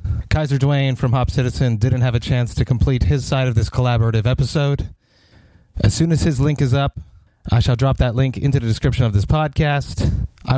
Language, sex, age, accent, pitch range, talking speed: English, male, 30-49, American, 105-130 Hz, 205 wpm